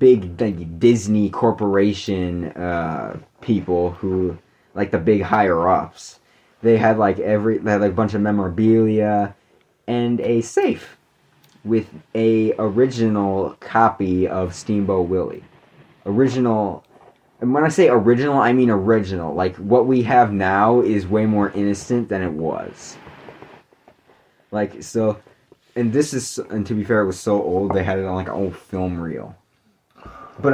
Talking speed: 150 wpm